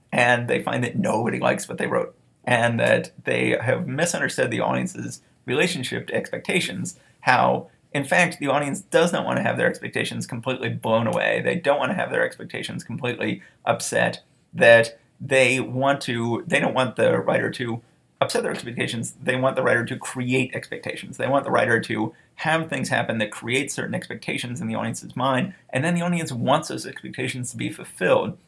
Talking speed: 190 wpm